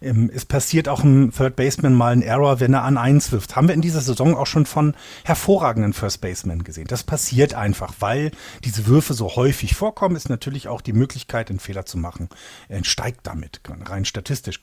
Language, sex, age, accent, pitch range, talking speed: German, male, 40-59, German, 110-150 Hz, 200 wpm